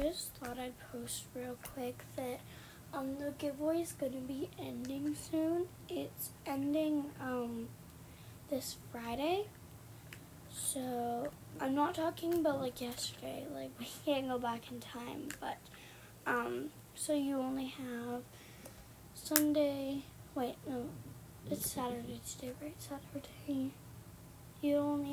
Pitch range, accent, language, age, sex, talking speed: 225-290 Hz, American, English, 20-39, female, 125 wpm